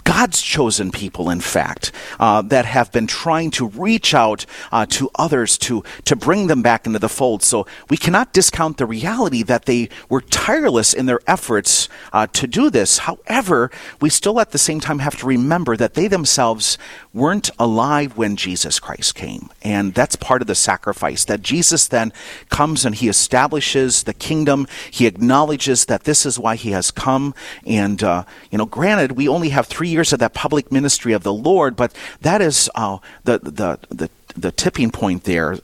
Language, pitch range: English, 110-150 Hz